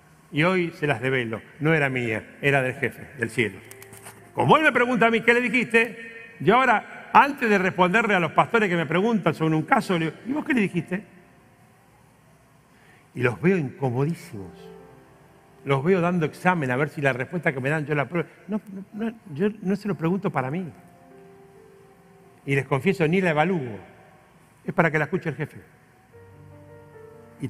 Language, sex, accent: Spanish, male, Argentinian